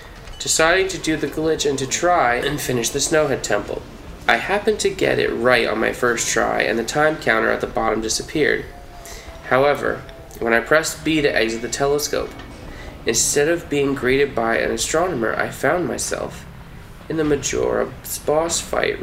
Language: English